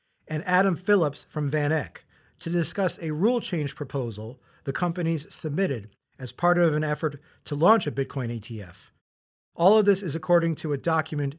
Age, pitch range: 40-59, 125-175 Hz